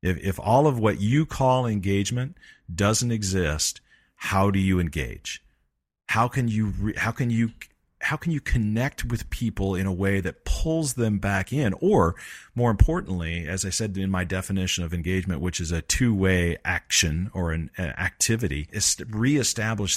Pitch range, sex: 90-110 Hz, male